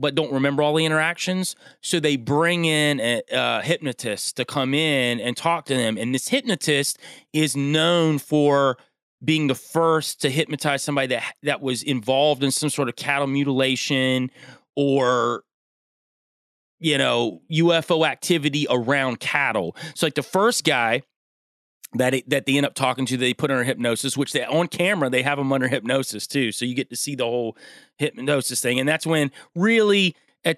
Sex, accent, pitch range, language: male, American, 130-155 Hz, English